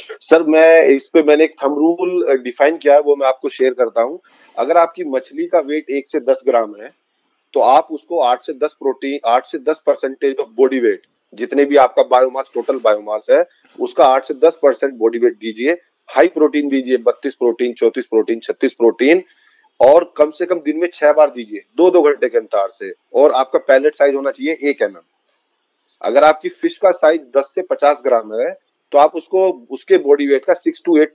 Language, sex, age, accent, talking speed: Hindi, male, 40-59, native, 205 wpm